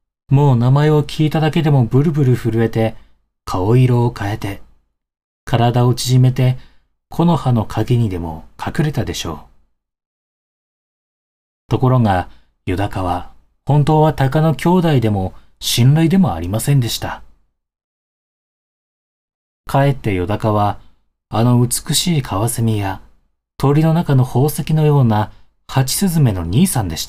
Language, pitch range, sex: Japanese, 90-140 Hz, male